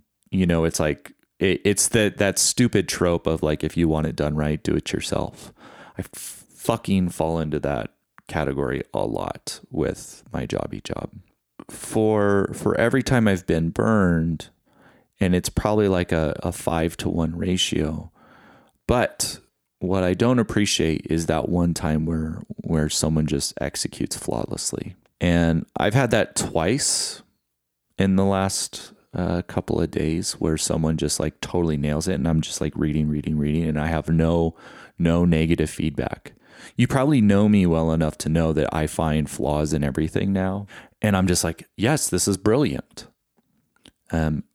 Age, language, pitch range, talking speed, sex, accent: 30-49, English, 80-95 Hz, 165 wpm, male, American